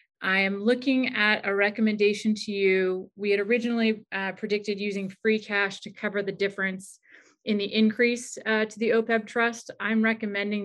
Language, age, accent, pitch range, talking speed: English, 30-49, American, 190-220 Hz, 170 wpm